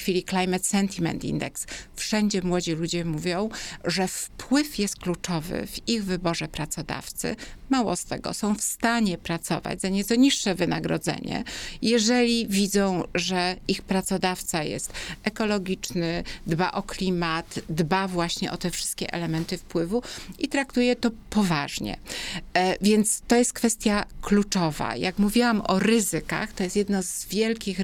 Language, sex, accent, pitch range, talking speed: Polish, female, native, 170-205 Hz, 135 wpm